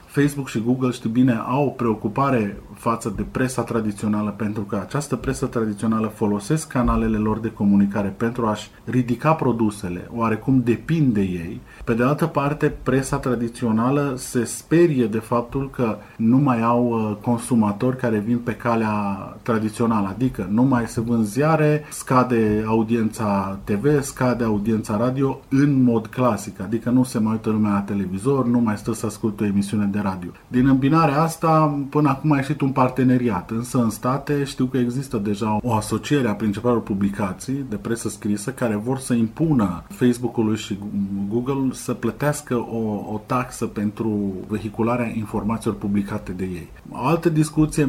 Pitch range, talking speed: 105-130 Hz, 160 wpm